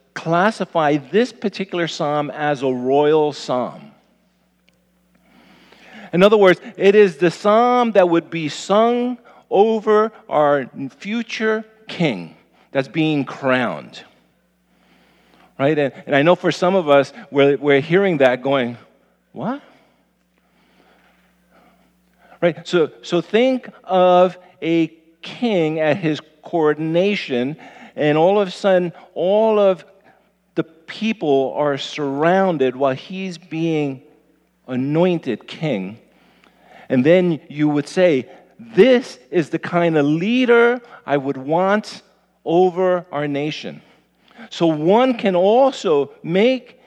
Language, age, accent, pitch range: English, 50-69, American, 150-200 Hz